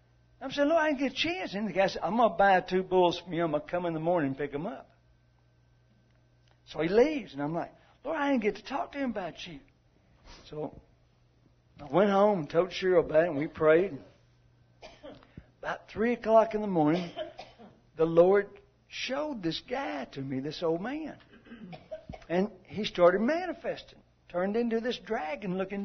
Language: English